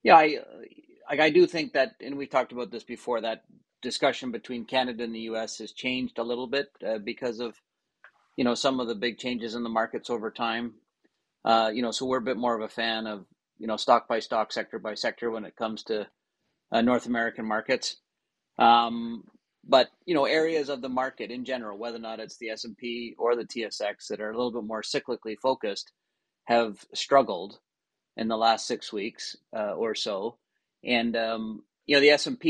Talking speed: 205 wpm